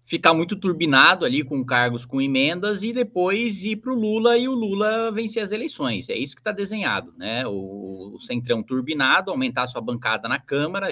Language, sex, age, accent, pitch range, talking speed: Portuguese, male, 20-39, Brazilian, 120-195 Hz, 190 wpm